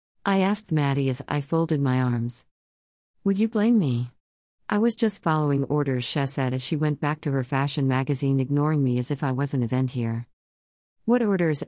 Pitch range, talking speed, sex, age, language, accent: 130-160 Hz, 195 wpm, female, 50-69, English, American